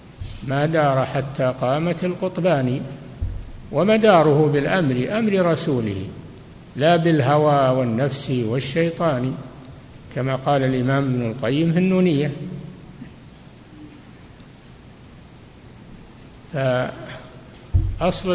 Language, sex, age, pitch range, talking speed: Arabic, male, 60-79, 130-165 Hz, 70 wpm